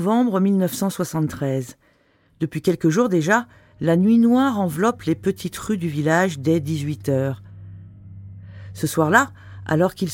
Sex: female